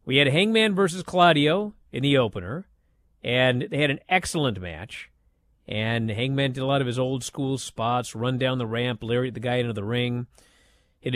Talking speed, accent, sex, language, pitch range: 190 wpm, American, male, English, 125-170 Hz